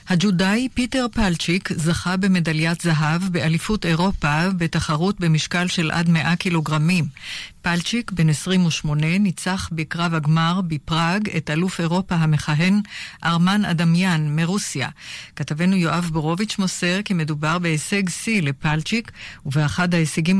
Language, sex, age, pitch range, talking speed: Hebrew, female, 50-69, 160-190 Hz, 115 wpm